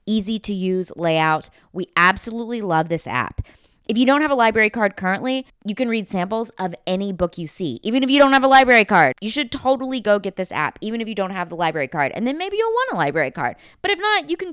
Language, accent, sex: English, American, female